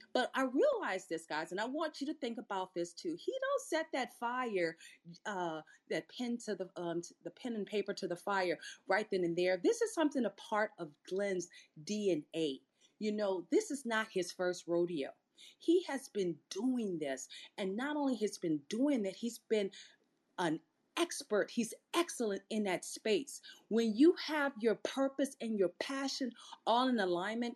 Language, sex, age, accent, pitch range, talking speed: English, female, 40-59, American, 195-275 Hz, 185 wpm